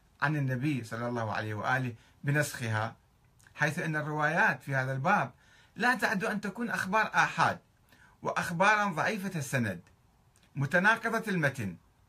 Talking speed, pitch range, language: 120 wpm, 120-185 Hz, Arabic